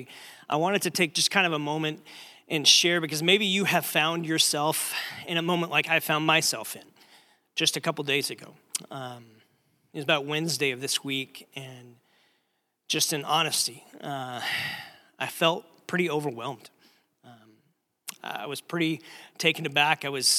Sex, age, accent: male, 30-49, American